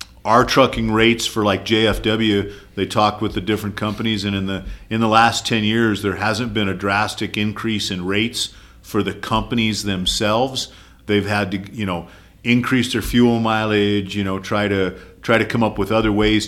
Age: 50-69